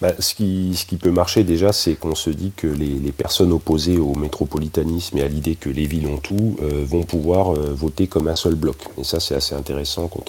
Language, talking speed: French, 245 wpm